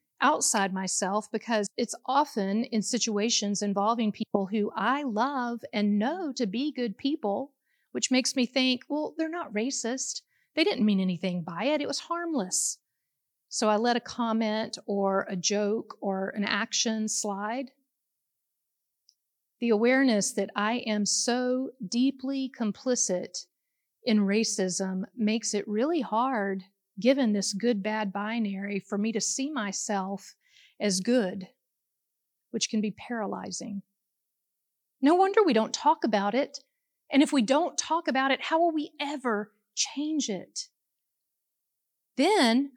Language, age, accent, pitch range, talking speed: English, 40-59, American, 205-275 Hz, 135 wpm